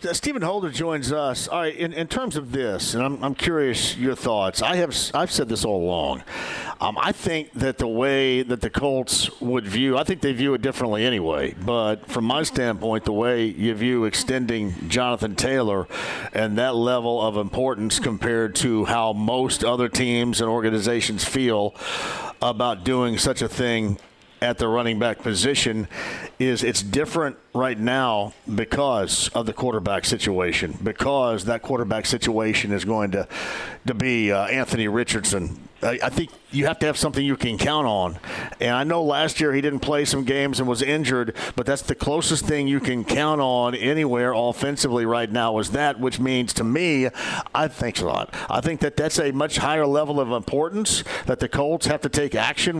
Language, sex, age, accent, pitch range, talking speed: English, male, 50-69, American, 115-145 Hz, 190 wpm